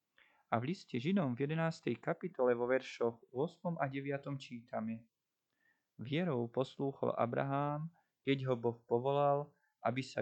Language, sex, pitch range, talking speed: Slovak, male, 125-155 Hz, 130 wpm